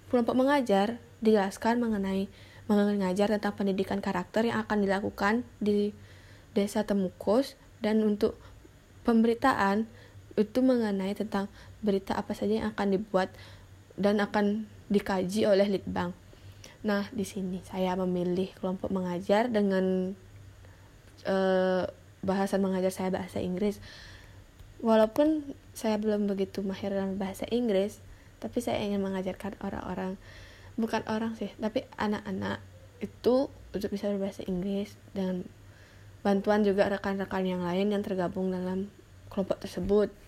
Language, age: Indonesian, 10-29